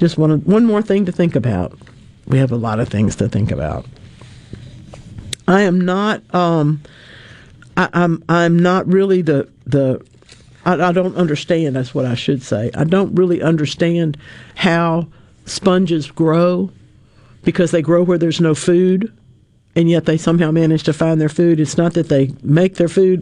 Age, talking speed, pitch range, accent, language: 50-69, 175 wpm, 135-175 Hz, American, English